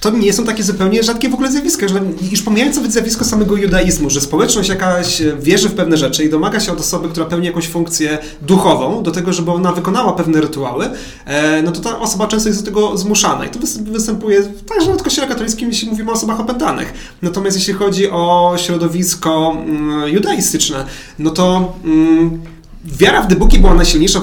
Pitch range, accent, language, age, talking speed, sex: 155-195 Hz, native, Polish, 30-49, 185 wpm, male